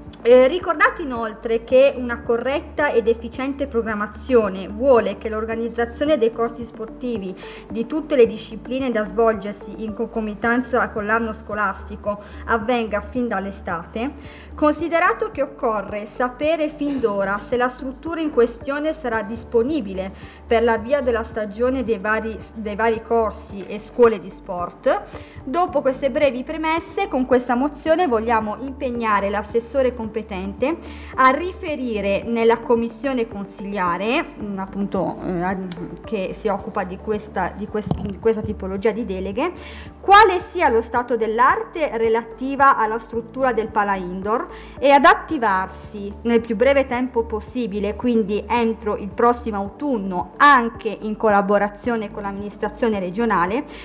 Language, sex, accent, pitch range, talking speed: Italian, female, native, 215-265 Hz, 130 wpm